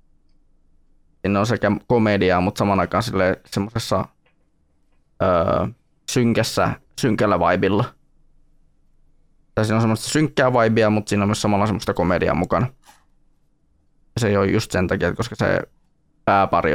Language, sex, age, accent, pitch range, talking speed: Finnish, male, 20-39, native, 95-115 Hz, 125 wpm